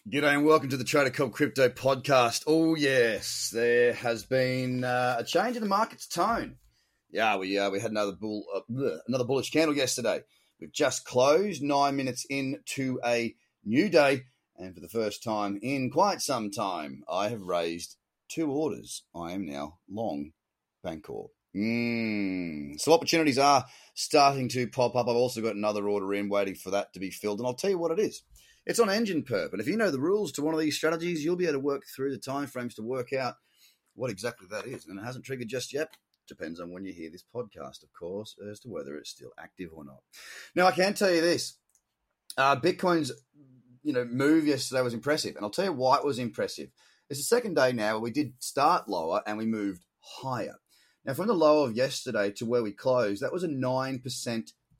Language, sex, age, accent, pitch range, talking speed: English, male, 30-49, Australian, 105-145 Hz, 210 wpm